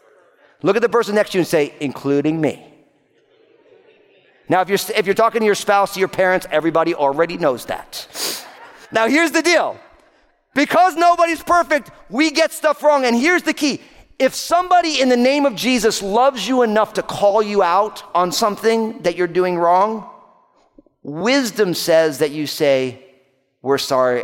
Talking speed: 170 wpm